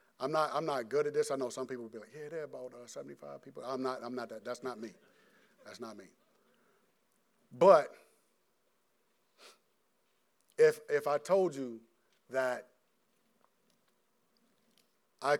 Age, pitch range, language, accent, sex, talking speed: 50-69, 125-150 Hz, English, American, male, 150 wpm